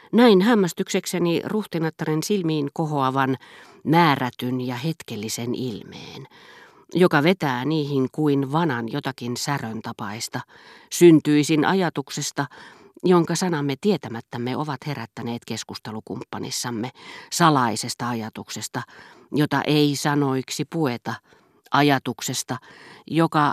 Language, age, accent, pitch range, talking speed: Finnish, 40-59, native, 120-160 Hz, 85 wpm